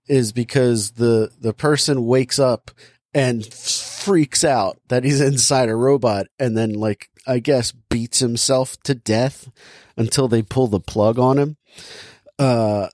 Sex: male